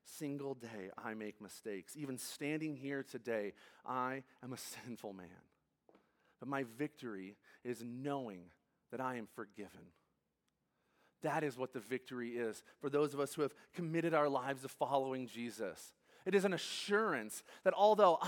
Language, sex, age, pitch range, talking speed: English, male, 30-49, 140-230 Hz, 155 wpm